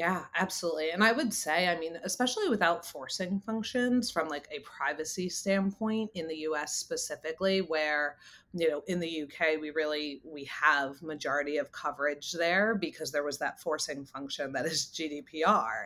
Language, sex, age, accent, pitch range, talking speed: English, female, 30-49, American, 150-195 Hz, 165 wpm